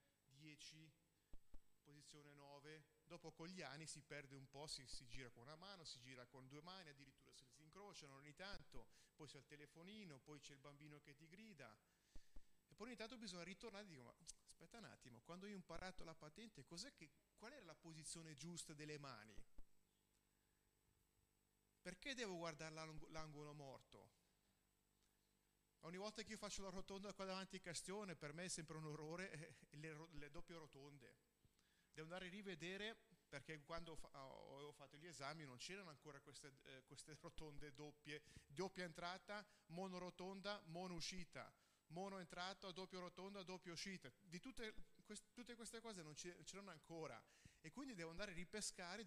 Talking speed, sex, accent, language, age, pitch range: 170 wpm, male, native, Italian, 30-49, 145-190 Hz